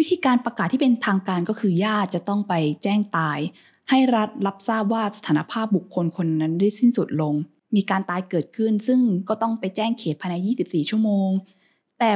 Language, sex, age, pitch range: Thai, female, 20-39, 180-235 Hz